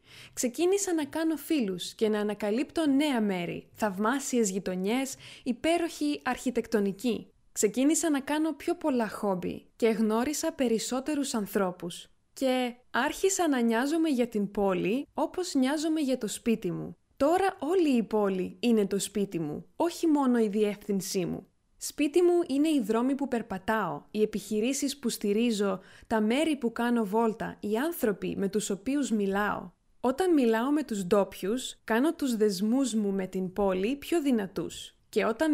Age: 20-39